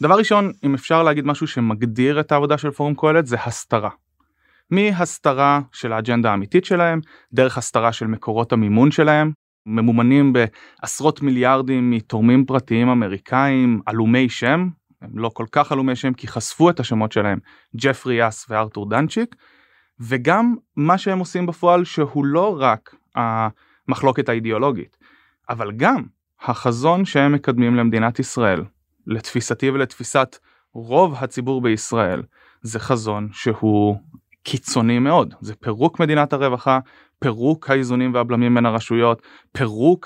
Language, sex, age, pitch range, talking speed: Hebrew, male, 20-39, 115-145 Hz, 125 wpm